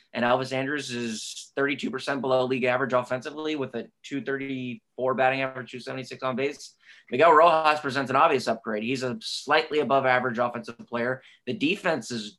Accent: American